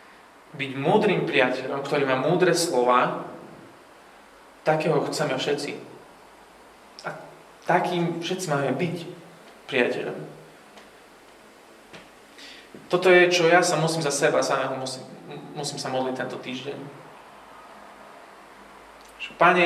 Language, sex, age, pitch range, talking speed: Slovak, male, 20-39, 135-170 Hz, 100 wpm